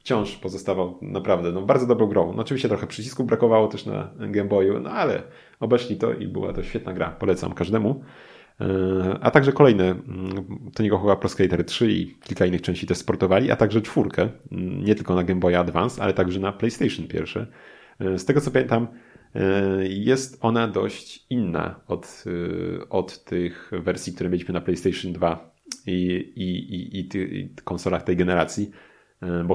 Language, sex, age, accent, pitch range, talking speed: Polish, male, 30-49, native, 90-105 Hz, 170 wpm